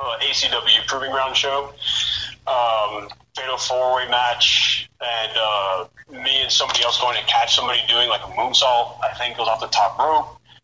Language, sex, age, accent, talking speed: English, male, 30-49, American, 175 wpm